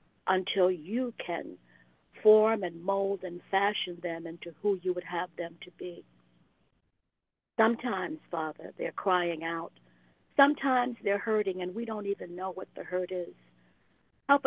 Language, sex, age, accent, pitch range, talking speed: English, female, 50-69, American, 170-205 Hz, 145 wpm